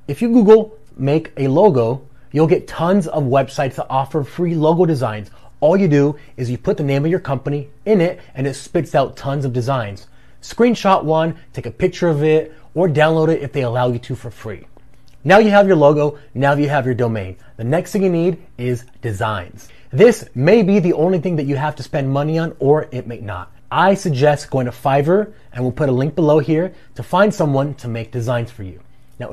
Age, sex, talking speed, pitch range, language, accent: 30-49, male, 220 wpm, 125-160 Hz, English, American